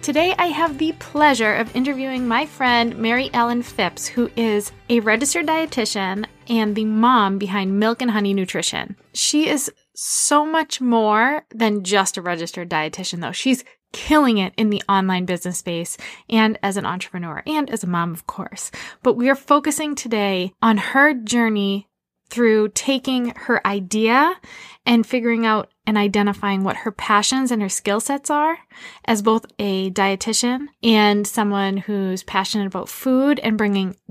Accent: American